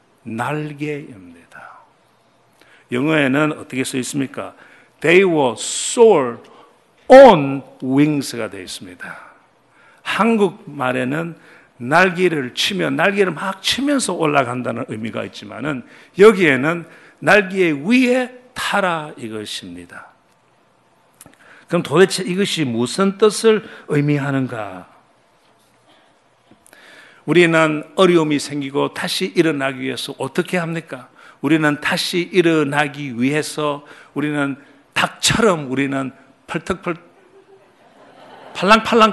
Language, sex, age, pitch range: Korean, male, 50-69, 135-190 Hz